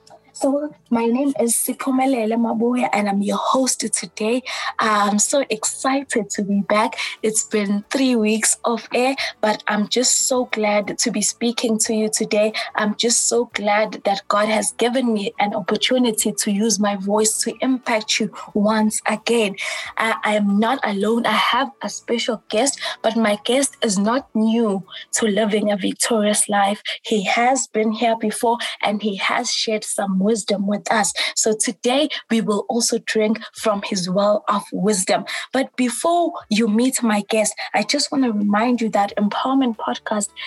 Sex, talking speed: female, 170 wpm